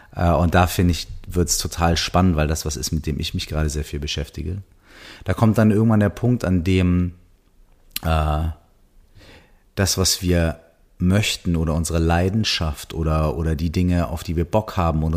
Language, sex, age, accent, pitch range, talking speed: German, male, 40-59, German, 80-100 Hz, 180 wpm